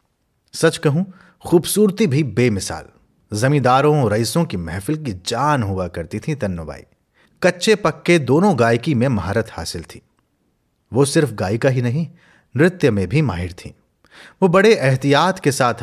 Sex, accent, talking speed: male, native, 145 wpm